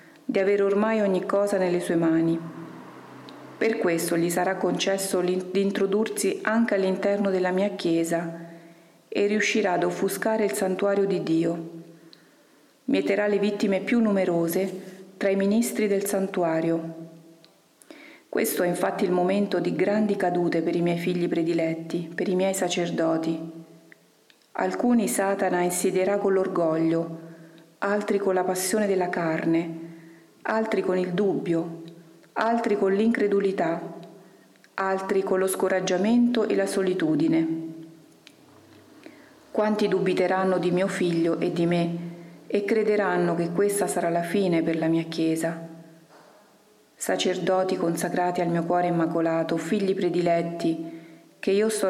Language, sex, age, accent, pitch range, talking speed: Italian, female, 40-59, native, 165-200 Hz, 125 wpm